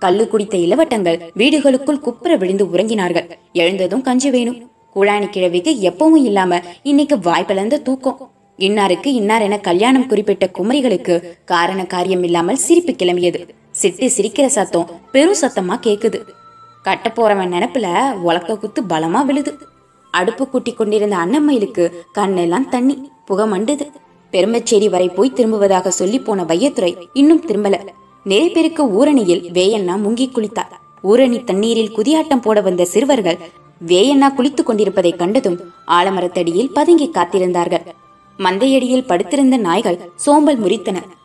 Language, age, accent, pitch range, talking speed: Tamil, 20-39, native, 180-265 Hz, 105 wpm